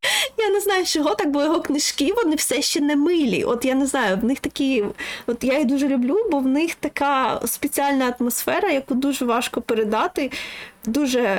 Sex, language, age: female, Ukrainian, 20-39